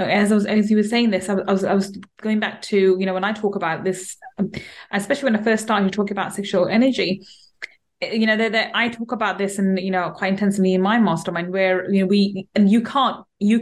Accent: British